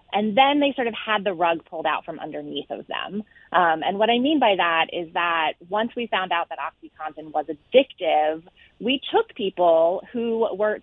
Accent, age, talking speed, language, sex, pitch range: American, 30-49, 200 wpm, English, female, 160-215 Hz